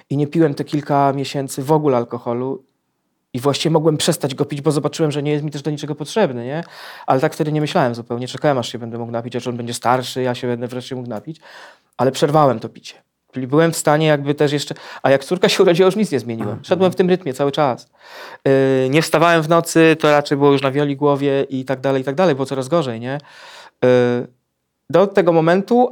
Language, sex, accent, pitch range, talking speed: Polish, male, native, 130-160 Hz, 230 wpm